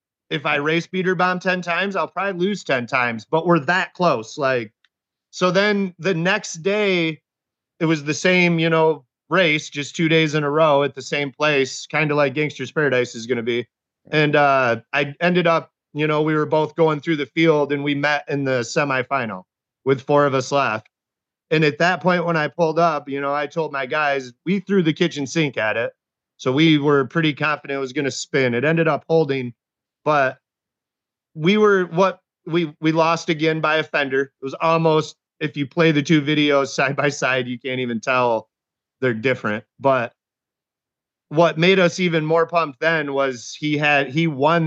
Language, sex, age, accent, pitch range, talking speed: English, male, 30-49, American, 135-160 Hz, 200 wpm